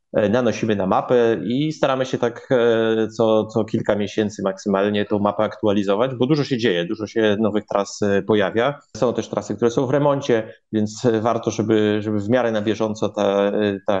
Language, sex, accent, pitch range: Polish, male, native, 105-115 Hz